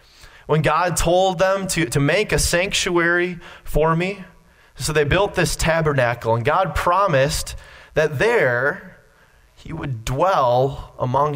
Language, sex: English, male